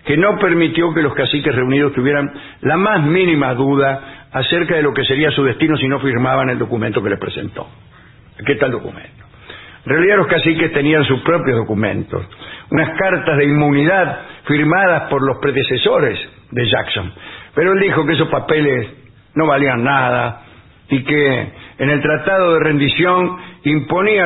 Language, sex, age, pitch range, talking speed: English, male, 60-79, 125-155 Hz, 165 wpm